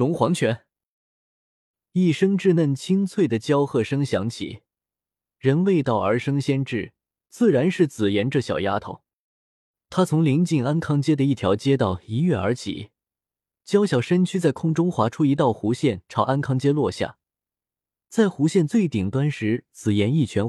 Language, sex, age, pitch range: Chinese, male, 20-39, 110-160 Hz